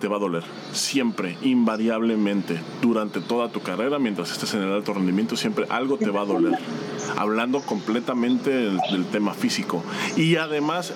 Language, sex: Spanish, male